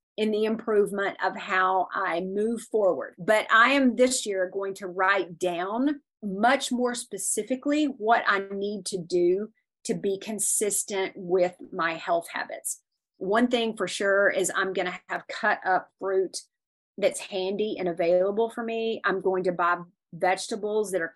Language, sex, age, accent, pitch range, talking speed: English, female, 40-59, American, 180-215 Hz, 160 wpm